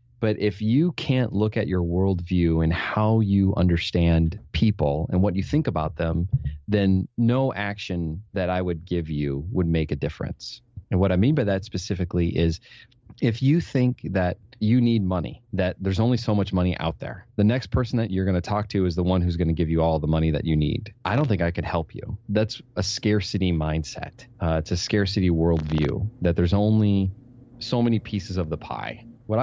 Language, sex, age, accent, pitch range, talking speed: English, male, 30-49, American, 85-110 Hz, 210 wpm